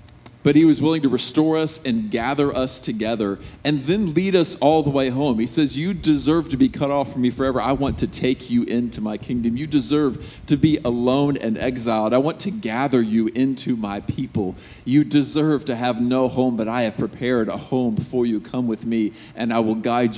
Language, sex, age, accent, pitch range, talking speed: English, male, 40-59, American, 110-140 Hz, 220 wpm